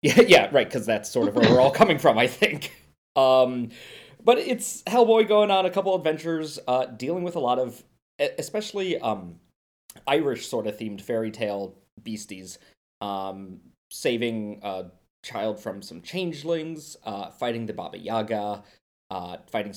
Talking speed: 150 wpm